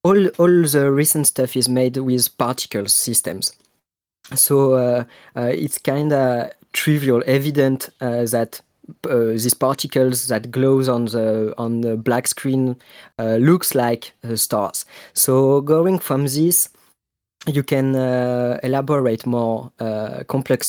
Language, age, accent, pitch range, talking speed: English, 20-39, French, 120-150 Hz, 135 wpm